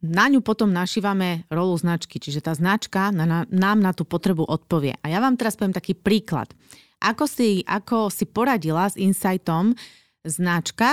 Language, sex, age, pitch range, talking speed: Slovak, female, 30-49, 170-215 Hz, 160 wpm